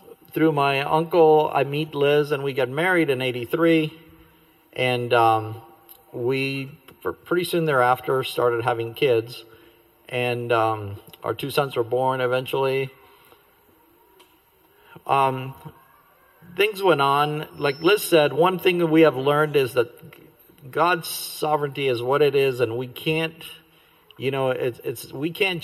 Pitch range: 125-160 Hz